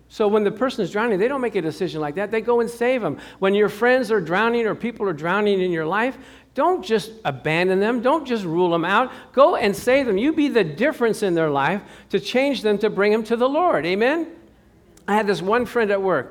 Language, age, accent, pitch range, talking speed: English, 50-69, American, 160-225 Hz, 245 wpm